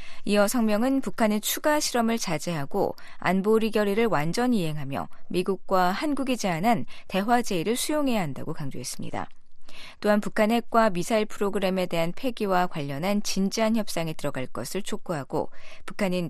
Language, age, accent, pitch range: Korean, 20-39, native, 170-235 Hz